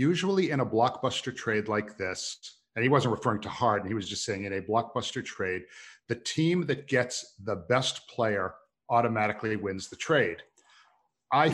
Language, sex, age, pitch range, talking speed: English, male, 50-69, 100-135 Hz, 170 wpm